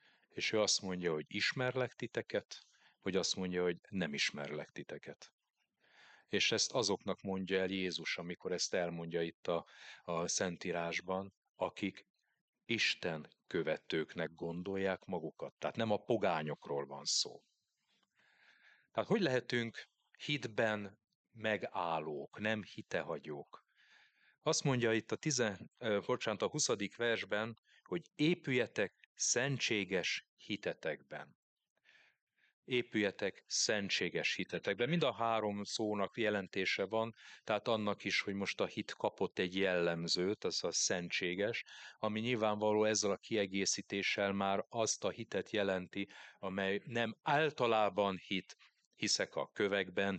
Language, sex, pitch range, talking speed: Hungarian, male, 95-115 Hz, 115 wpm